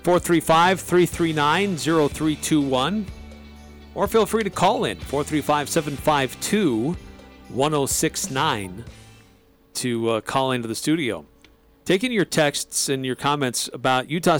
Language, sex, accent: English, male, American